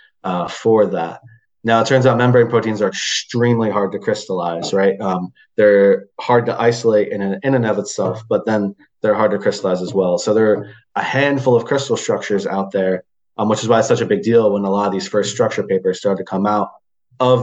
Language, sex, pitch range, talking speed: English, male, 95-110 Hz, 225 wpm